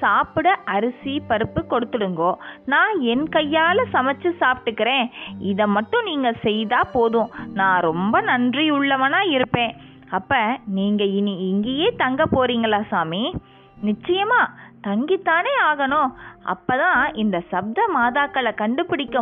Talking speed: 100 wpm